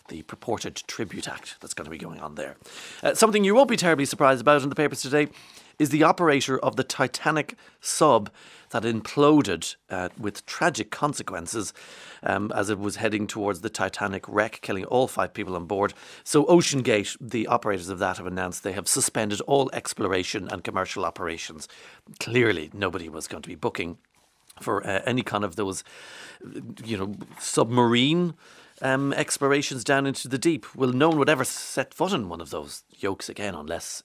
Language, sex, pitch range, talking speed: English, male, 105-145 Hz, 180 wpm